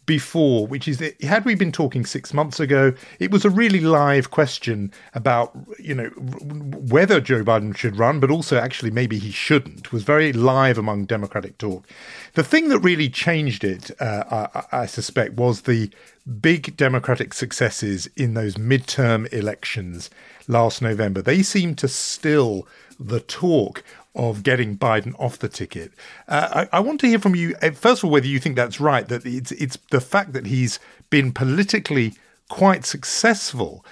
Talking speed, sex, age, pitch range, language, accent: 170 wpm, male, 50-69, 115-155 Hz, English, British